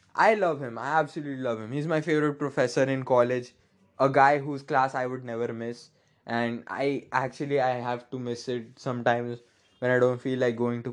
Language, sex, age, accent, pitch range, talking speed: English, male, 20-39, Indian, 125-155 Hz, 205 wpm